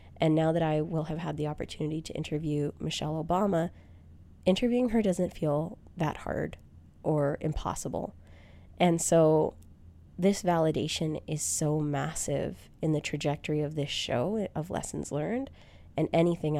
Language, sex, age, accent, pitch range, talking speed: English, female, 20-39, American, 125-160 Hz, 140 wpm